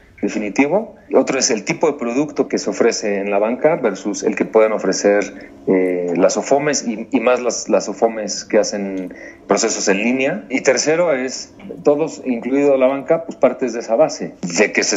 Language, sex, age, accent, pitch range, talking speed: Spanish, male, 40-59, Mexican, 105-125 Hz, 190 wpm